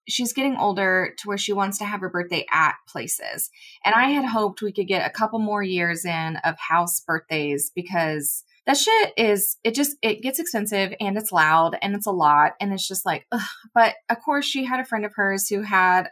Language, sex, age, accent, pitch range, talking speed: English, female, 20-39, American, 190-265 Hz, 220 wpm